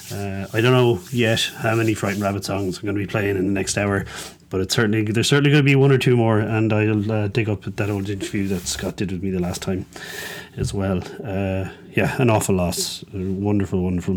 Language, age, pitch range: English, 30-49, 100-125 Hz